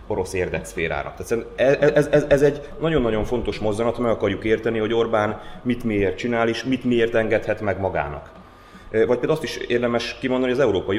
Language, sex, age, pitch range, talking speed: Hungarian, male, 30-49, 95-130 Hz, 190 wpm